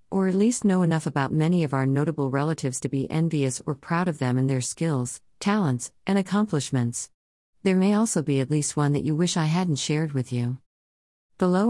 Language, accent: English, American